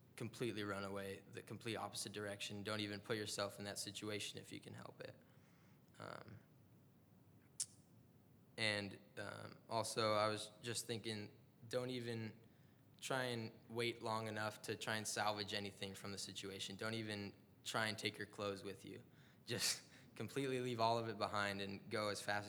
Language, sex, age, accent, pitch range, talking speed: English, male, 10-29, American, 105-120 Hz, 165 wpm